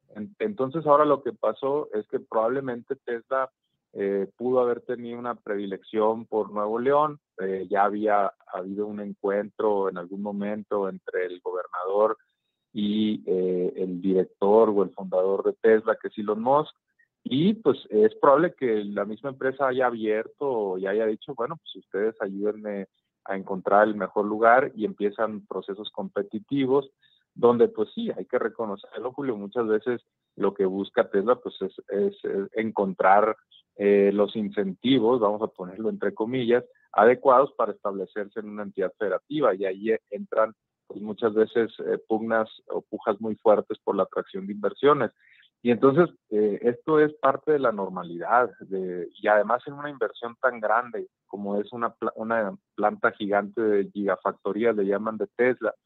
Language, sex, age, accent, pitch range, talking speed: Spanish, male, 30-49, Mexican, 100-125 Hz, 160 wpm